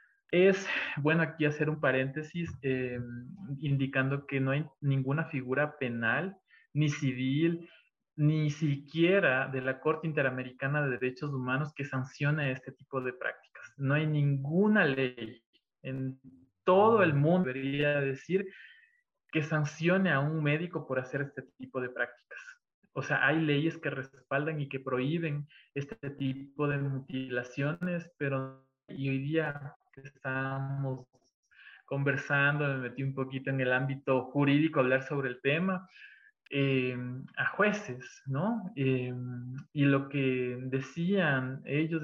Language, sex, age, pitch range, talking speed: Spanish, male, 20-39, 130-155 Hz, 135 wpm